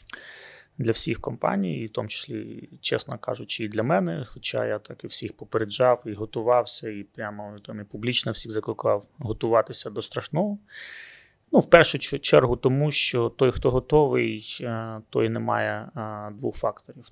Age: 20-39